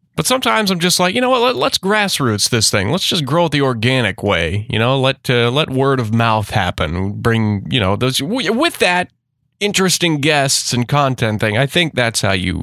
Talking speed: 210 wpm